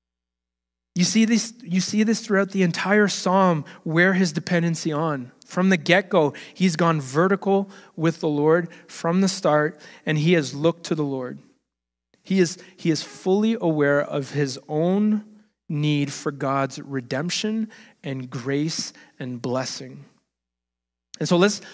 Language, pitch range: English, 145-200 Hz